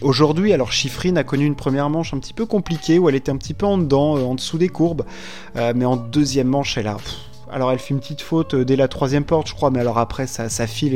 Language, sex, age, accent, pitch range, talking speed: French, male, 20-39, French, 125-150 Hz, 275 wpm